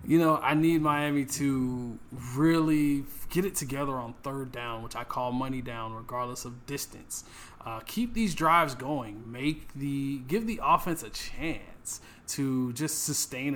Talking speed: 160 wpm